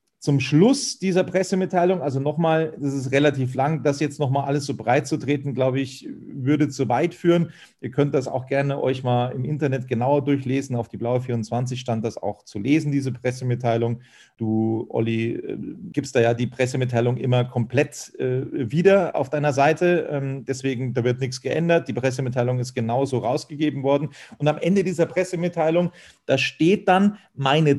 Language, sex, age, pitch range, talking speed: German, male, 40-59, 125-160 Hz, 175 wpm